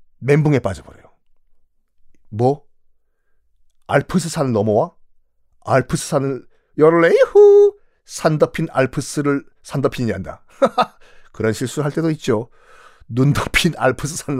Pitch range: 120-185 Hz